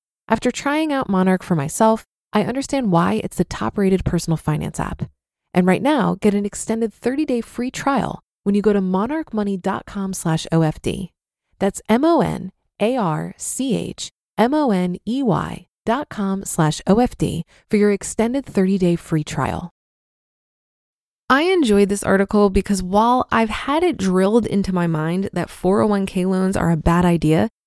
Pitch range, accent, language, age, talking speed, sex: 180-230 Hz, American, English, 20-39, 130 wpm, female